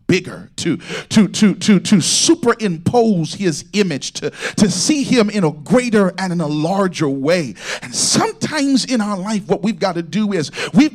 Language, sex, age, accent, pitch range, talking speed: English, male, 40-59, American, 190-240 Hz, 180 wpm